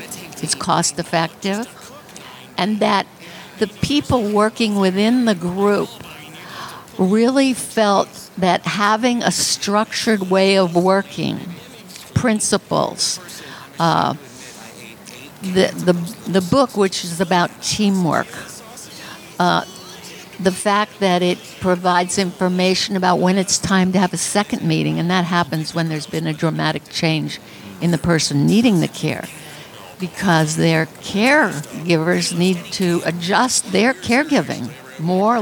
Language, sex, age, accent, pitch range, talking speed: English, female, 60-79, American, 175-210 Hz, 115 wpm